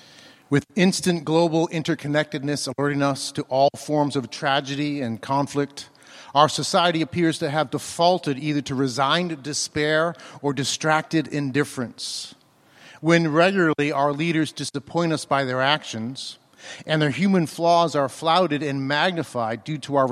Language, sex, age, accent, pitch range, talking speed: English, male, 50-69, American, 130-160 Hz, 135 wpm